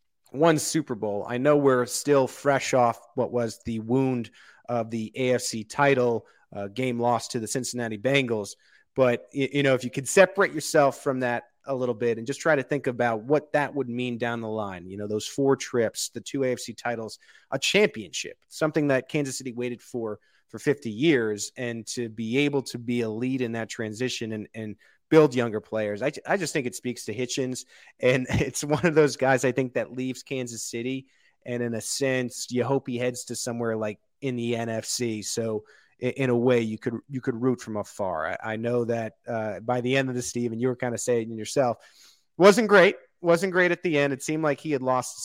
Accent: American